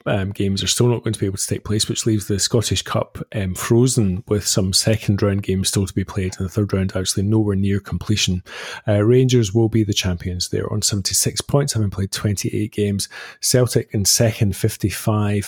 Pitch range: 95-120 Hz